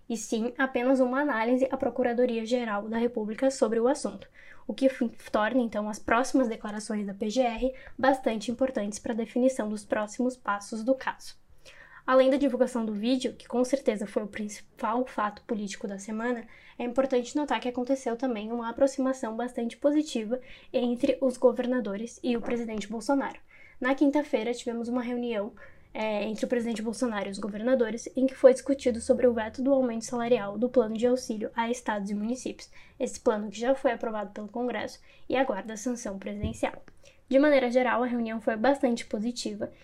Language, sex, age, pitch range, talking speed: Portuguese, female, 10-29, 225-260 Hz, 170 wpm